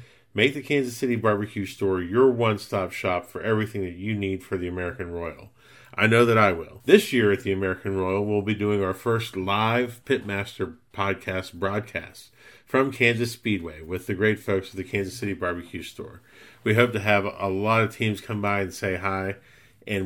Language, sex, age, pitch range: English, male, 40-59, 95-120 Hz